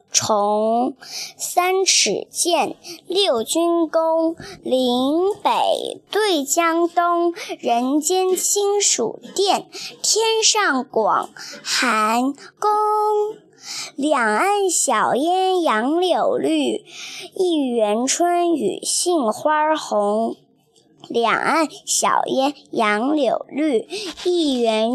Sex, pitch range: male, 255-355 Hz